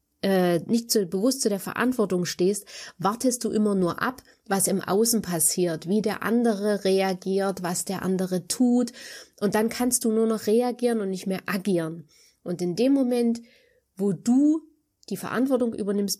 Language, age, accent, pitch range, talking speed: German, 20-39, German, 180-230 Hz, 165 wpm